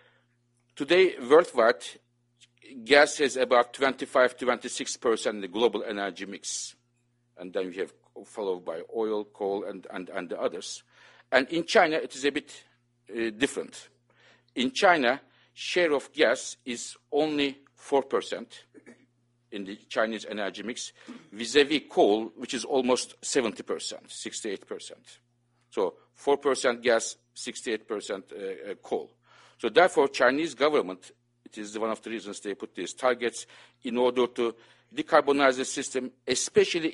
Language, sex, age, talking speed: English, male, 50-69, 130 wpm